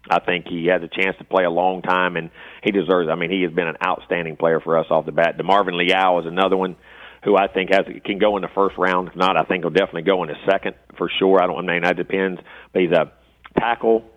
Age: 40-59